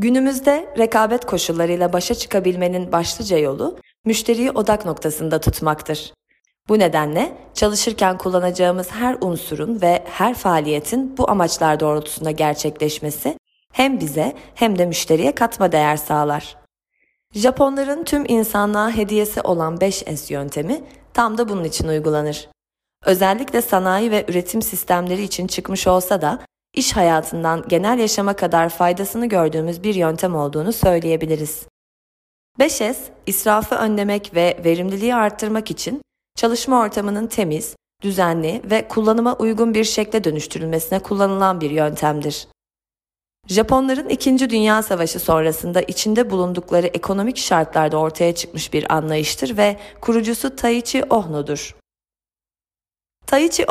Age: 30-49